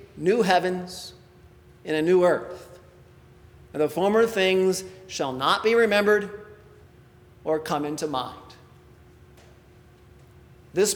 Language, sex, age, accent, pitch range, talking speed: English, male, 40-59, American, 175-220 Hz, 105 wpm